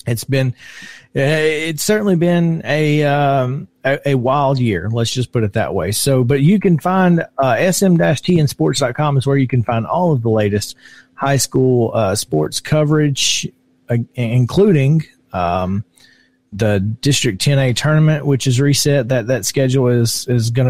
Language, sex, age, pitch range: English, male, 40-59, 115-145 Hz